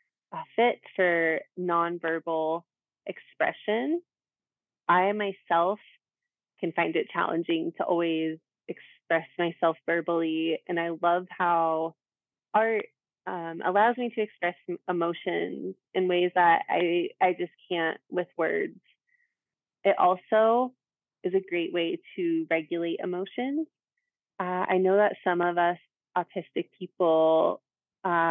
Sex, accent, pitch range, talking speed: female, American, 170-205 Hz, 115 wpm